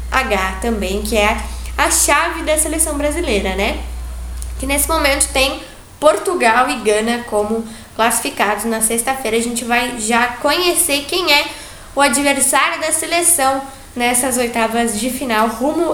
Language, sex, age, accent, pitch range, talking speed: Portuguese, female, 10-29, Brazilian, 235-300 Hz, 140 wpm